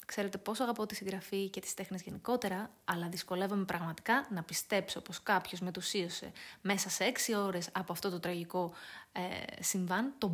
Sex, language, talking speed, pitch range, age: female, Greek, 165 wpm, 185-245 Hz, 20-39